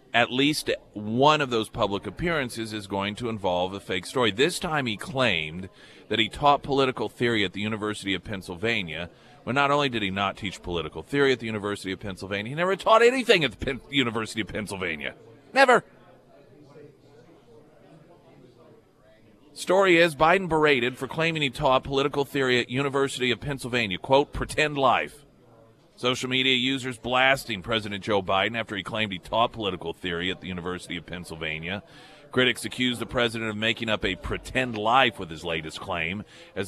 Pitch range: 100-135 Hz